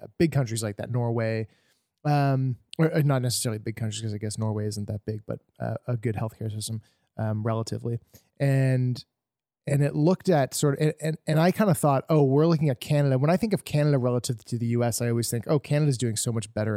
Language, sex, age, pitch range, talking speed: English, male, 30-49, 115-150 Hz, 220 wpm